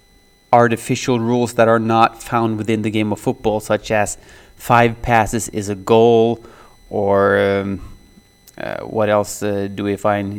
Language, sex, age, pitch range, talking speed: English, male, 20-39, 110-125 Hz, 155 wpm